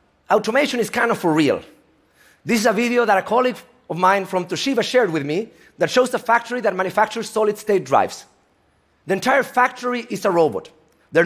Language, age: Korean, 40-59